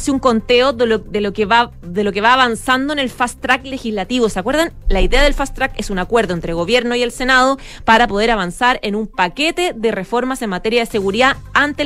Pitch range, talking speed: 195-255 Hz, 240 wpm